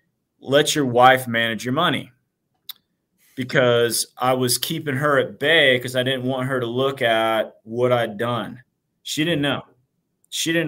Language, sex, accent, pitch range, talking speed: English, male, American, 115-130 Hz, 165 wpm